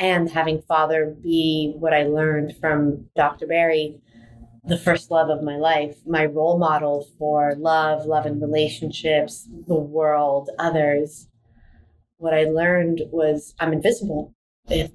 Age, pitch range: 30-49, 150-170 Hz